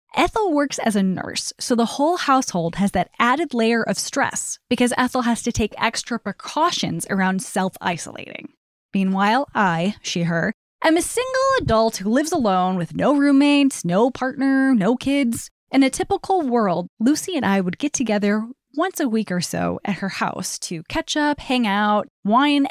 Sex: female